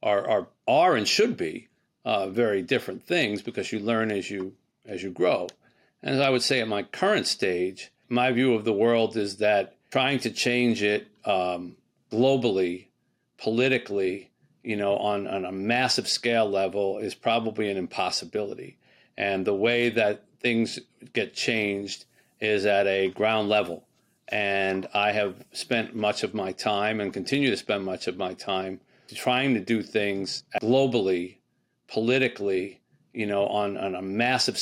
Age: 40-59